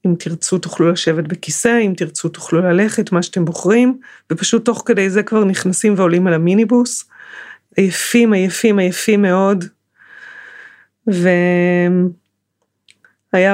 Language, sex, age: Hebrew, female, 30-49